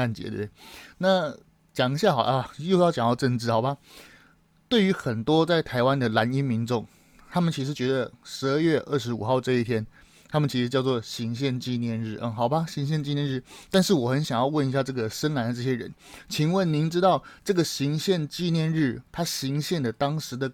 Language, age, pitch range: Chinese, 20-39, 120-155 Hz